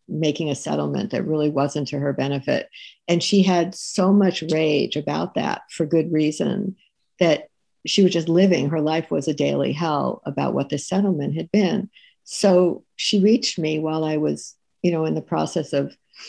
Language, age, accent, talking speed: English, 60-79, American, 185 wpm